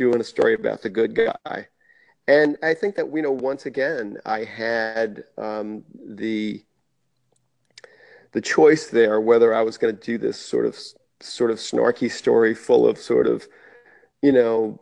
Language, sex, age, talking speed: English, male, 40-59, 165 wpm